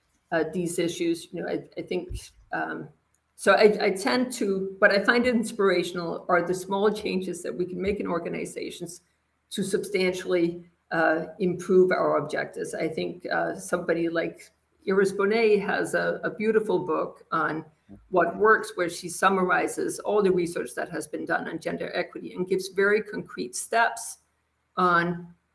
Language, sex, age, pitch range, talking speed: English, female, 50-69, 170-205 Hz, 160 wpm